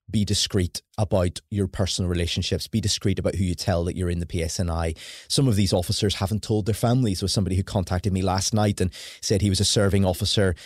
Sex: male